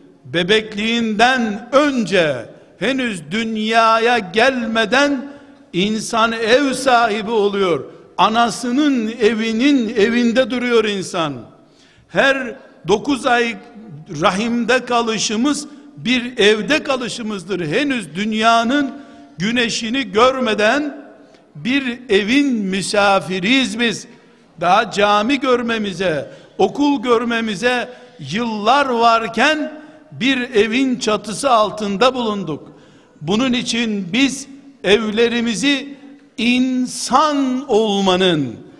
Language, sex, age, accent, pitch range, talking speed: Turkish, male, 60-79, native, 205-255 Hz, 75 wpm